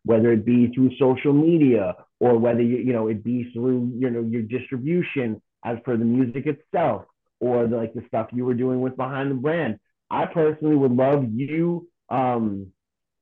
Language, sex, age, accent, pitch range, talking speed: English, male, 30-49, American, 115-145 Hz, 185 wpm